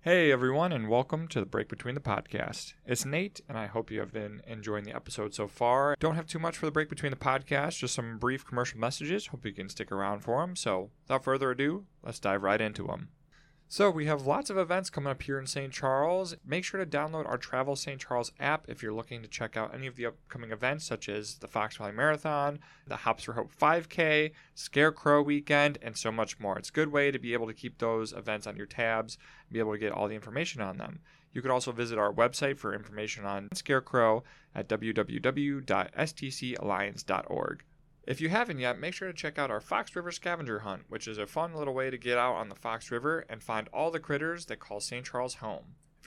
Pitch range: 110-150 Hz